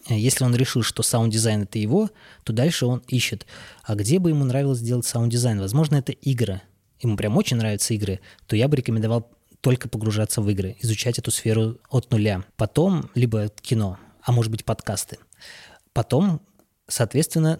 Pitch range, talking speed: 115-130 Hz, 165 wpm